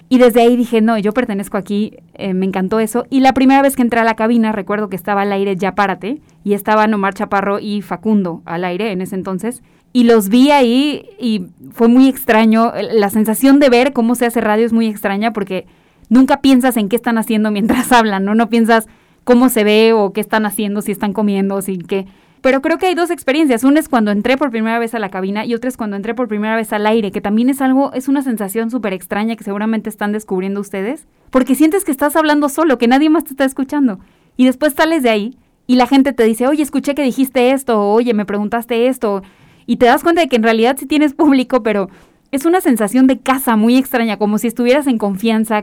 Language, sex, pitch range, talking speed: English, female, 210-260 Hz, 235 wpm